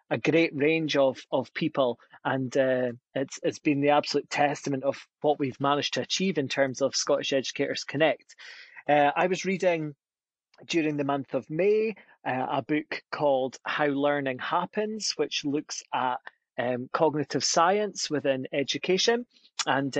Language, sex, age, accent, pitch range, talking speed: English, male, 30-49, British, 135-165 Hz, 155 wpm